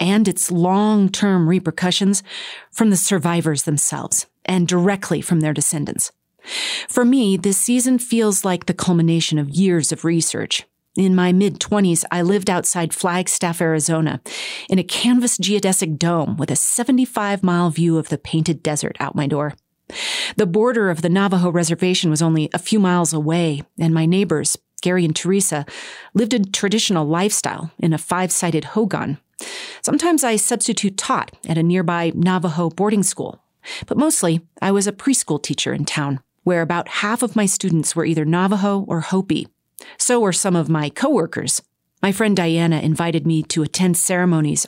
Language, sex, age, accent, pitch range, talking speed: English, female, 40-59, American, 165-205 Hz, 160 wpm